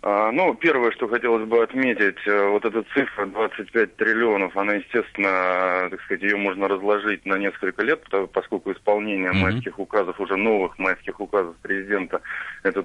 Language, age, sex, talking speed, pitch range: Russian, 20-39, male, 145 wpm, 95-115 Hz